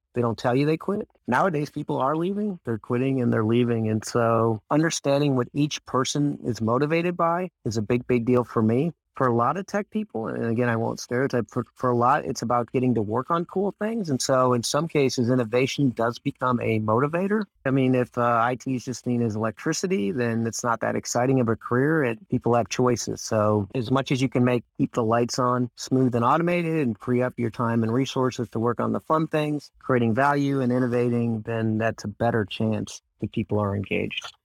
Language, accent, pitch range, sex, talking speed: English, American, 115-140 Hz, male, 220 wpm